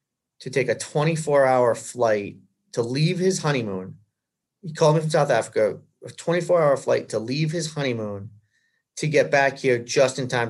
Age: 30-49